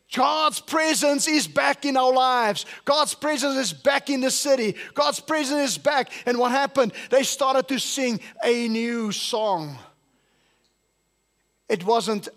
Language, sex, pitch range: English, male, 200-260 Hz